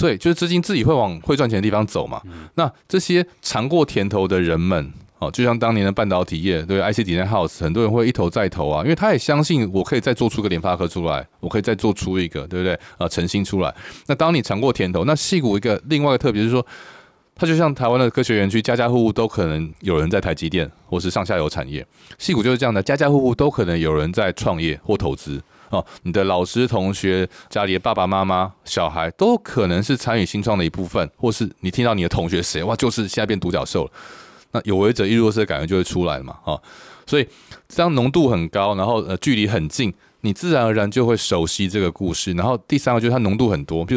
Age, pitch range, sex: 20-39, 90-125 Hz, male